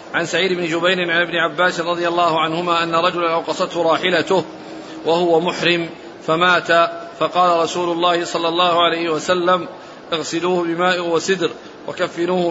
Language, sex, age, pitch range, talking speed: Arabic, male, 40-59, 165-180 Hz, 135 wpm